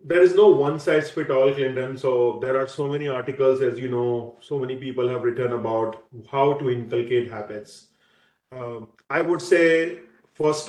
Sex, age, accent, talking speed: male, 40-59, Indian, 165 wpm